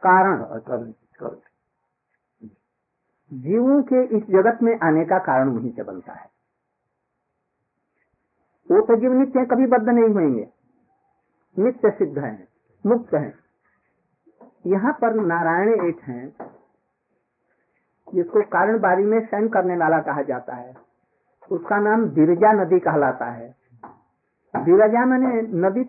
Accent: native